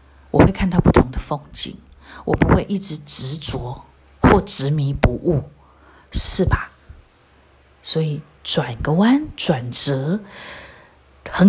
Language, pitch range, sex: Chinese, 135-180 Hz, female